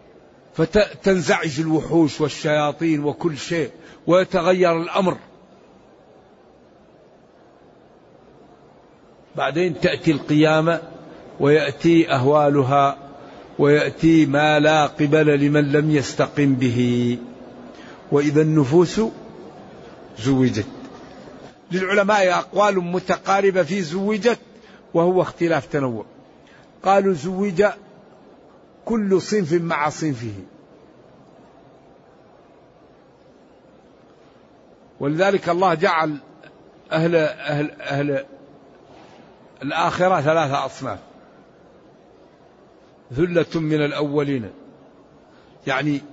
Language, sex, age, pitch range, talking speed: Arabic, male, 60-79, 145-175 Hz, 65 wpm